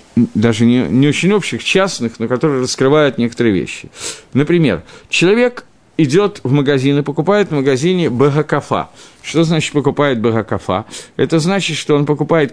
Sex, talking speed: male, 145 wpm